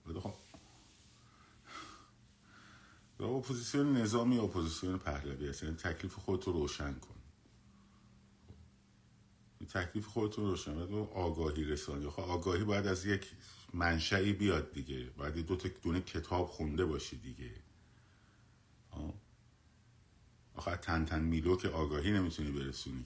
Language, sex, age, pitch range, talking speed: Persian, male, 50-69, 80-105 Hz, 120 wpm